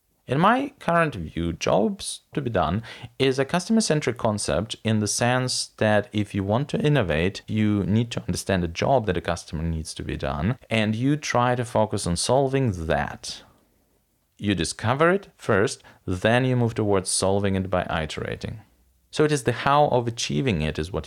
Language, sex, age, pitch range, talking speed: English, male, 40-59, 90-125 Hz, 180 wpm